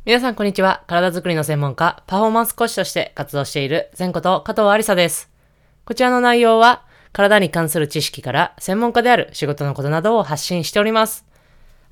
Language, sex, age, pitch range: Japanese, female, 20-39, 140-200 Hz